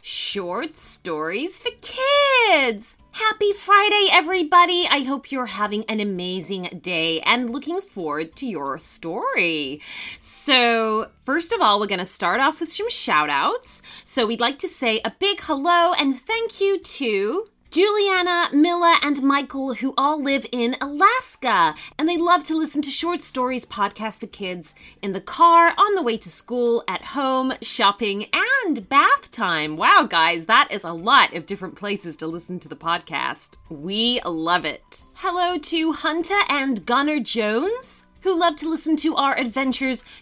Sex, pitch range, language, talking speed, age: female, 205-345 Hz, English, 165 wpm, 30-49